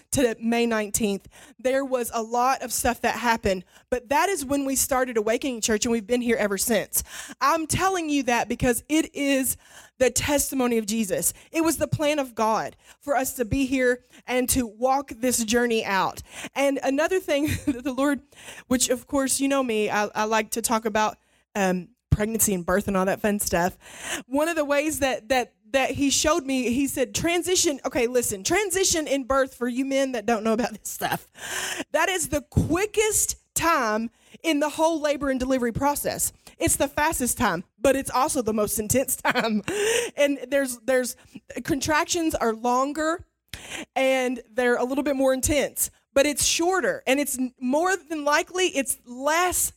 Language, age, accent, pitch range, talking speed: English, 20-39, American, 235-295 Hz, 185 wpm